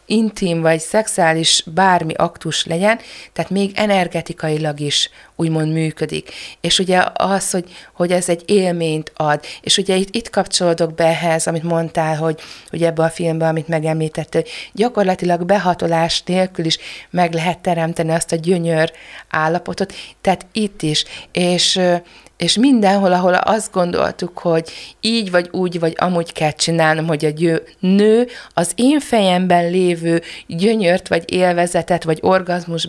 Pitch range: 165-195 Hz